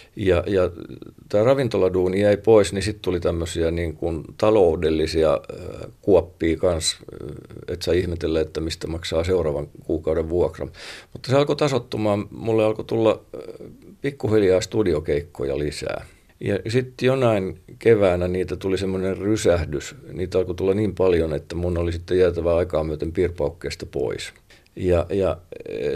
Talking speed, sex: 135 wpm, male